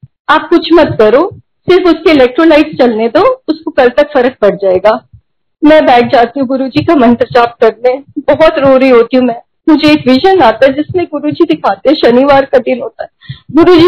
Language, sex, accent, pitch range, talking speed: Hindi, female, native, 240-310 Hz, 85 wpm